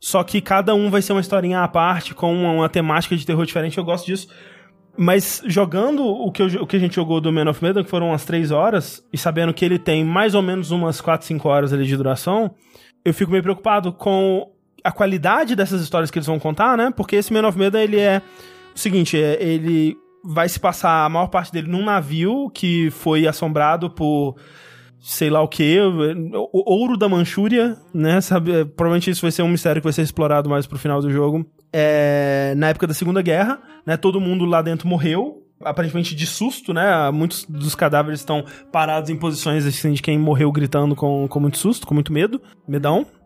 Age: 20-39